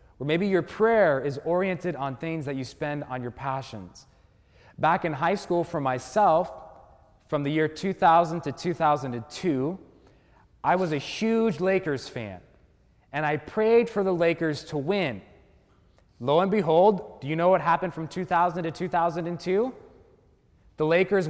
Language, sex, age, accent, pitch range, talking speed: English, male, 20-39, American, 145-190 Hz, 150 wpm